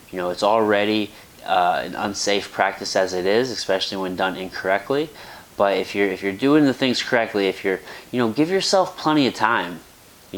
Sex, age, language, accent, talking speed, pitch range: male, 20-39, English, American, 195 wpm, 100-120 Hz